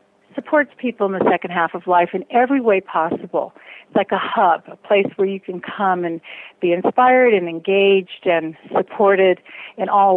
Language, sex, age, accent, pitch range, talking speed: English, female, 50-69, American, 180-230 Hz, 185 wpm